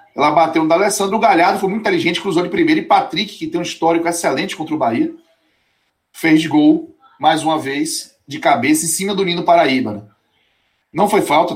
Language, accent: Portuguese, Brazilian